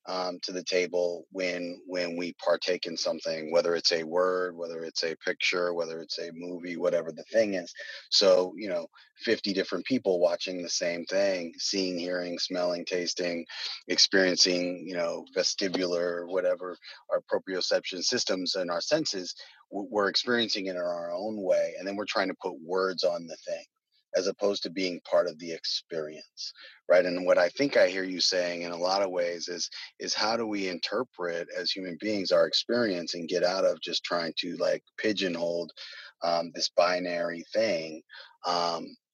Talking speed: 175 wpm